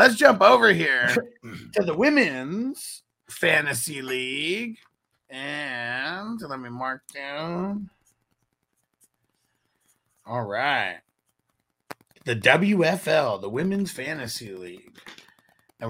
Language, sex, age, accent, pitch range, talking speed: English, male, 30-49, American, 130-190 Hz, 85 wpm